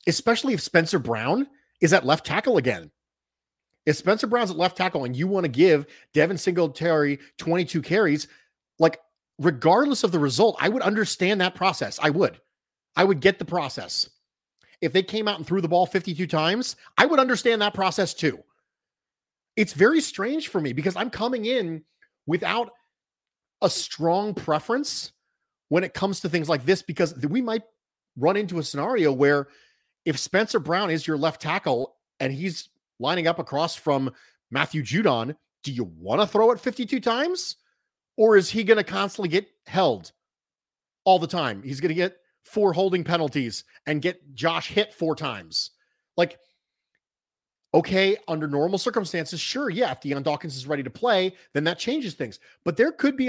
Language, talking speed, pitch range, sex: English, 175 wpm, 155-210 Hz, male